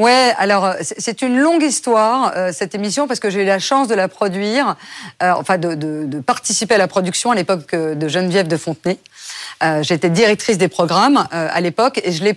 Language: French